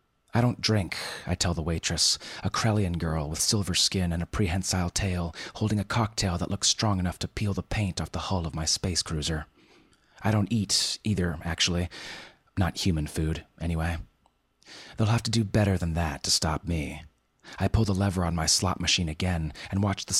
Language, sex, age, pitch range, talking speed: English, male, 30-49, 80-100 Hz, 195 wpm